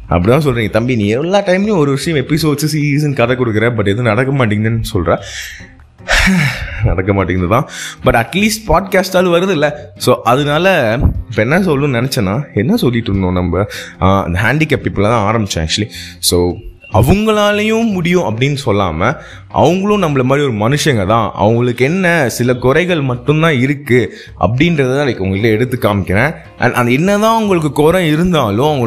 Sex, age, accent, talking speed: male, 20-39, native, 140 wpm